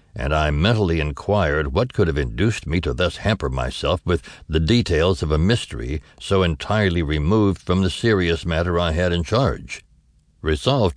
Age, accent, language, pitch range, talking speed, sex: 60-79, American, English, 75-105 Hz, 170 wpm, male